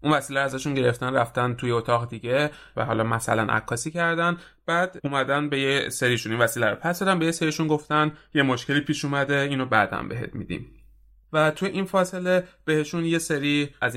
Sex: male